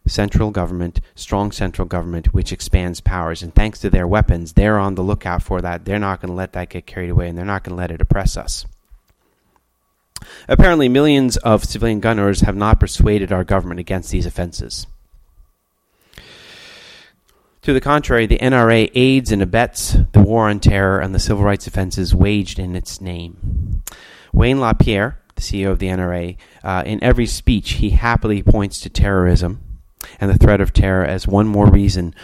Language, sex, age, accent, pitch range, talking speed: English, male, 30-49, American, 90-110 Hz, 180 wpm